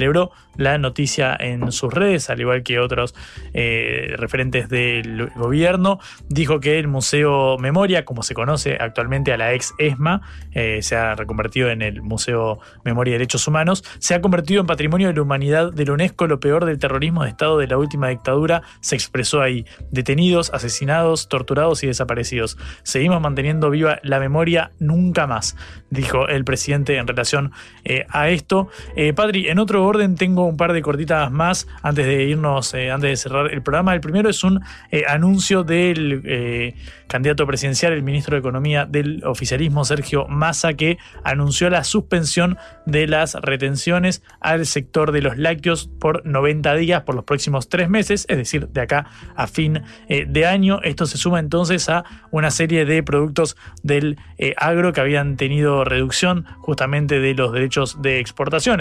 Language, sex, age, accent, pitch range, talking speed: Spanish, male, 20-39, Argentinian, 130-165 Hz, 170 wpm